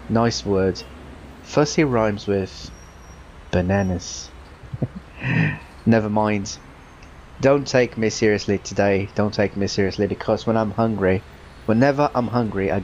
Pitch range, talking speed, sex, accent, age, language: 95-115 Hz, 115 wpm, male, British, 20-39, English